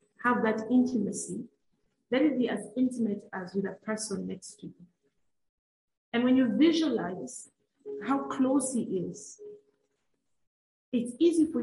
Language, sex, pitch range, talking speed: English, female, 205-260 Hz, 135 wpm